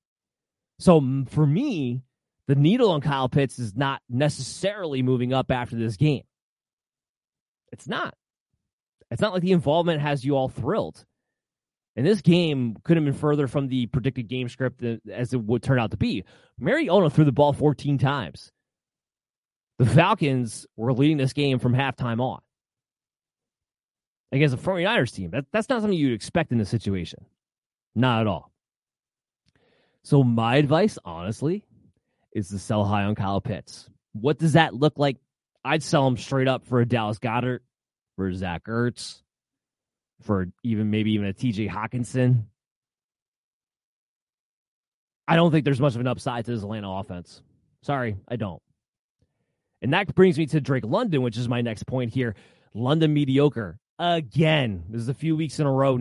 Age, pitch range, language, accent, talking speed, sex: 30-49, 115-150 Hz, English, American, 160 wpm, male